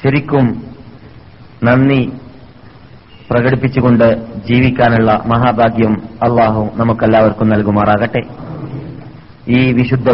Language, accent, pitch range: Malayalam, native, 115-130 Hz